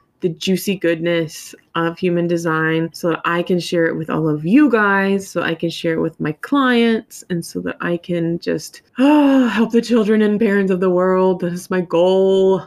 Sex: female